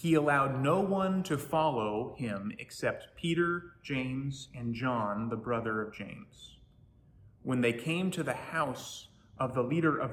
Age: 30-49